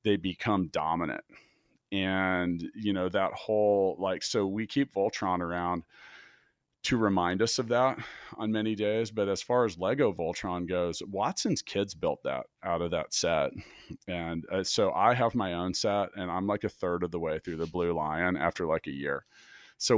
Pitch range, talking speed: 90-105 Hz, 185 wpm